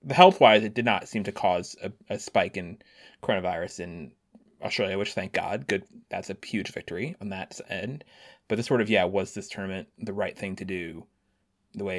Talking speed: 205 wpm